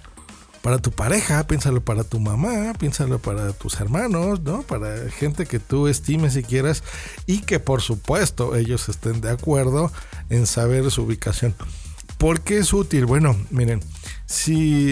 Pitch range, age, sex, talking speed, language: 120-165 Hz, 40-59, male, 155 wpm, Spanish